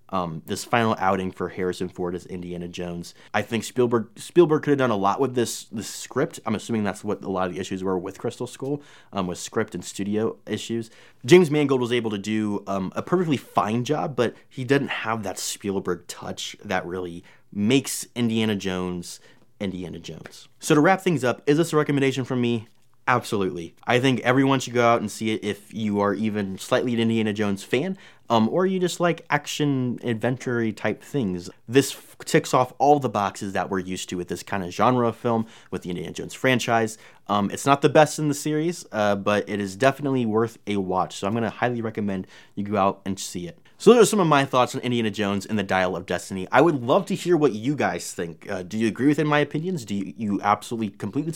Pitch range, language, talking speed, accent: 100-140 Hz, English, 225 wpm, American